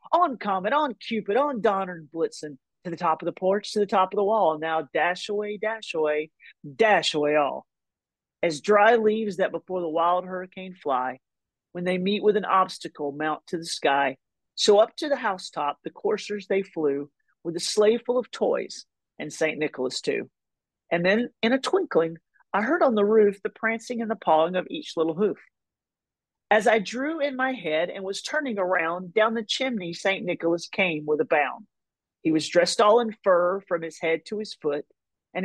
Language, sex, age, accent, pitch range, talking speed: English, male, 40-59, American, 165-220 Hz, 200 wpm